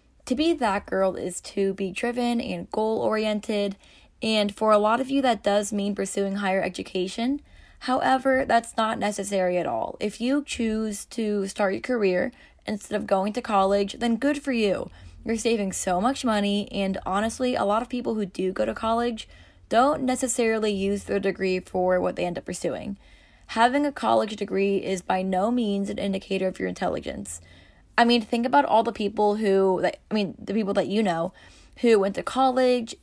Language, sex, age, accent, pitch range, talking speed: English, female, 20-39, American, 195-230 Hz, 185 wpm